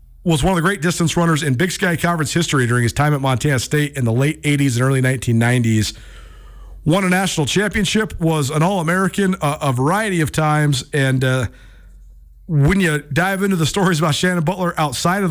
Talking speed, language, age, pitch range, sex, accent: 190 wpm, English, 40-59, 125-180 Hz, male, American